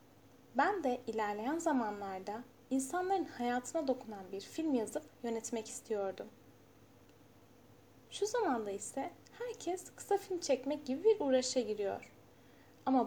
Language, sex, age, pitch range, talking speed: Turkish, female, 10-29, 215-295 Hz, 110 wpm